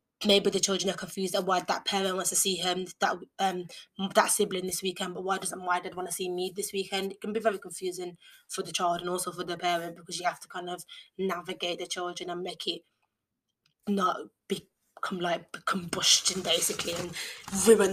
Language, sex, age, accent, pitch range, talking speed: English, female, 20-39, British, 180-200 Hz, 210 wpm